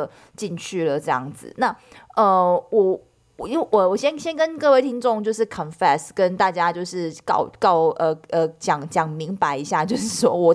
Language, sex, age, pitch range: Chinese, female, 20-39, 170-240 Hz